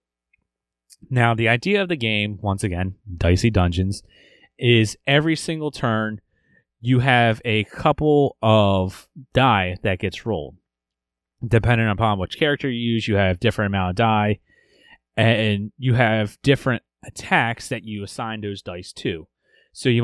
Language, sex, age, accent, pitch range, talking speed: English, male, 30-49, American, 90-120 Hz, 145 wpm